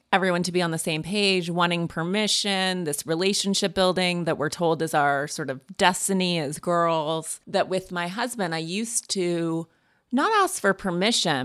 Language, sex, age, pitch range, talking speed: English, female, 30-49, 160-195 Hz, 175 wpm